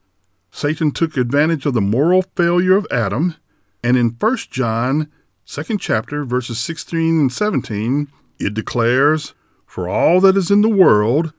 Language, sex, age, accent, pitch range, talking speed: English, male, 50-69, American, 105-170 Hz, 150 wpm